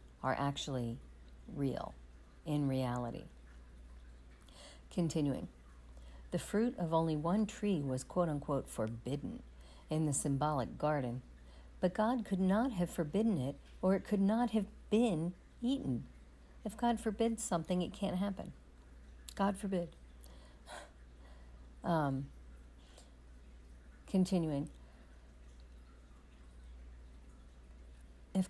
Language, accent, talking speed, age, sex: English, American, 95 wpm, 60-79, female